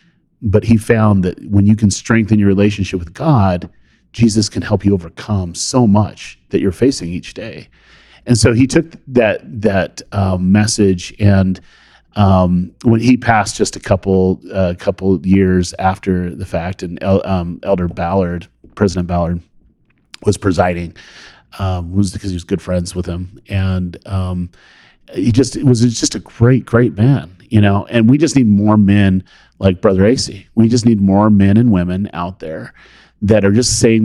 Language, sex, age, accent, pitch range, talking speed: English, male, 40-59, American, 95-115 Hz, 180 wpm